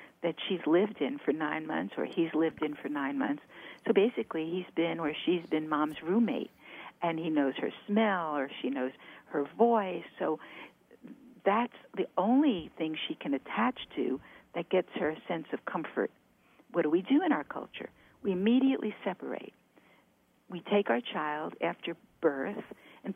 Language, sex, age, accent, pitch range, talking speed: English, female, 60-79, American, 165-250 Hz, 170 wpm